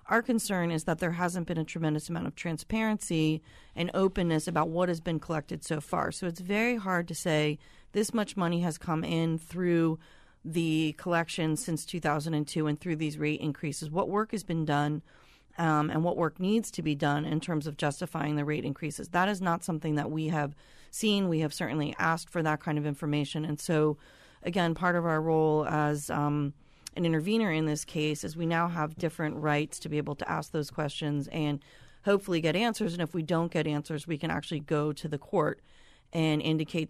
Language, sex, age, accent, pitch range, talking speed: English, female, 40-59, American, 150-175 Hz, 205 wpm